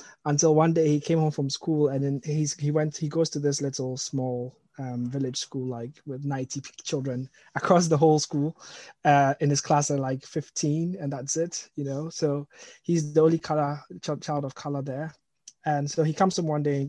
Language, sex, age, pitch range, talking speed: English, male, 20-39, 130-155 Hz, 210 wpm